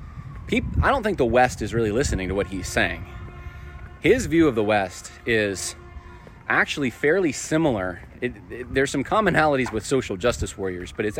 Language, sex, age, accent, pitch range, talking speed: English, male, 30-49, American, 90-125 Hz, 160 wpm